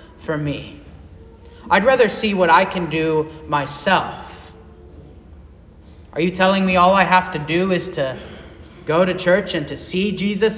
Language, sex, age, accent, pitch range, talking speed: English, male, 30-49, American, 140-200 Hz, 160 wpm